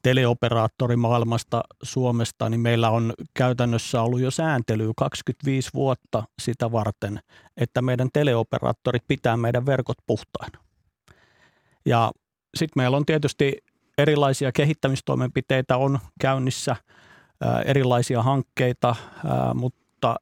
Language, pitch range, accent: Finnish, 115-130 Hz, native